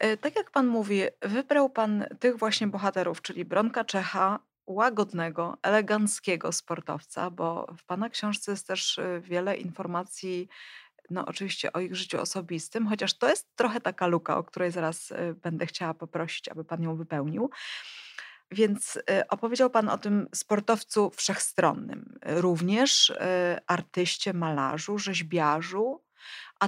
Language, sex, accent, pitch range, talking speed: Polish, female, native, 180-225 Hz, 130 wpm